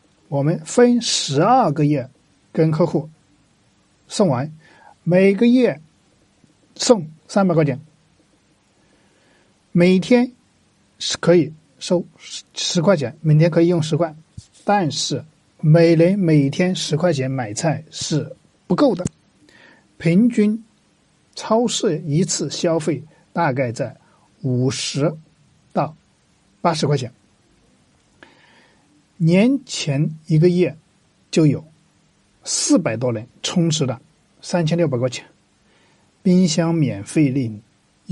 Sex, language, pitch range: male, Chinese, 140-175 Hz